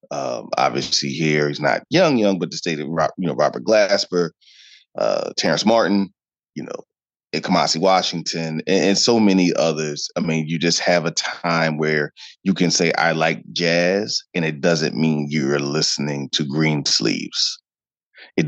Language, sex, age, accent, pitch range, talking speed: English, male, 30-49, American, 75-90 Hz, 165 wpm